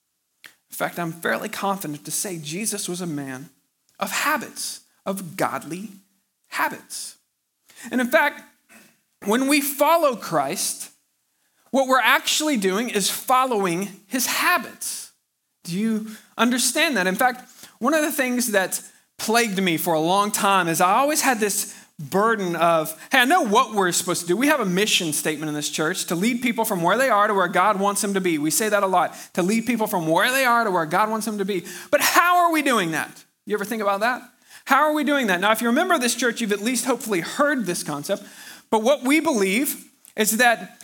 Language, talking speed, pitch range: English, 205 wpm, 185-250 Hz